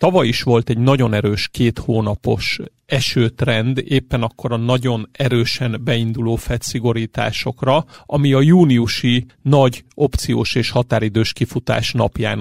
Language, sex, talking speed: Hungarian, male, 120 wpm